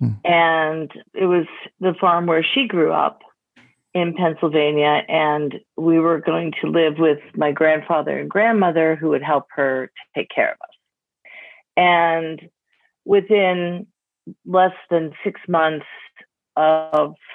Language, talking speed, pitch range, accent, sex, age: English, 130 wpm, 155-185 Hz, American, female, 50-69